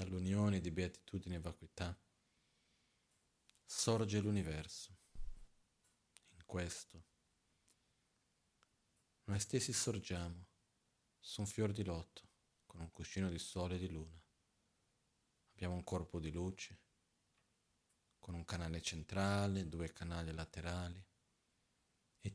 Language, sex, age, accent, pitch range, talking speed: Italian, male, 40-59, native, 85-100 Hz, 100 wpm